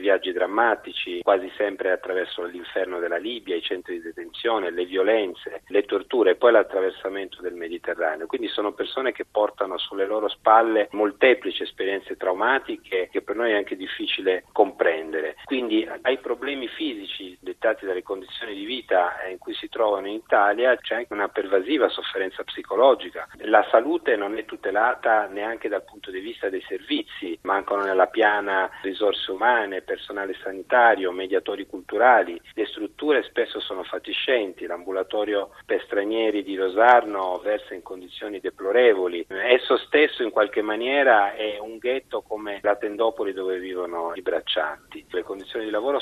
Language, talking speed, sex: Italian, 150 wpm, male